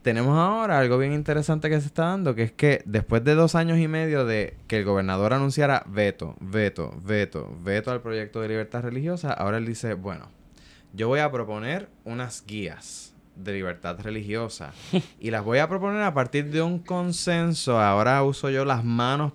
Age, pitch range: 20-39, 105-145 Hz